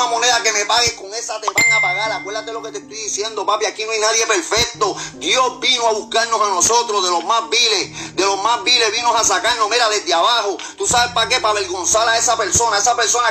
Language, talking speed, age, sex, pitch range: Spanish, 240 wpm, 30-49, male, 215-250 Hz